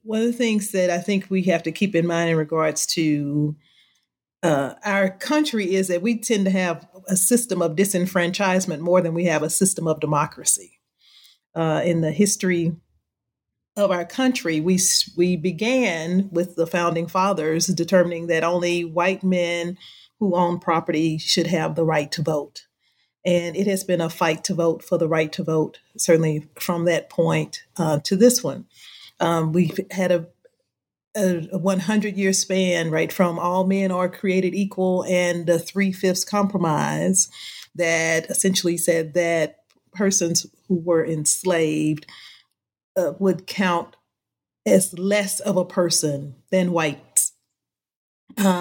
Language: English